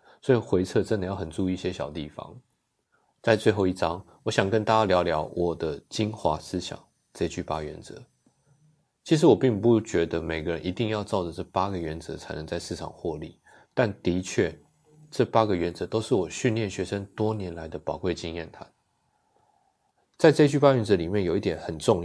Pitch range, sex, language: 90-115 Hz, male, Chinese